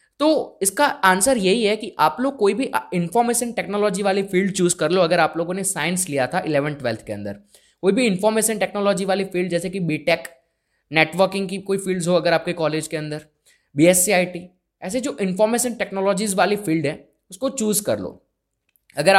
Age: 20-39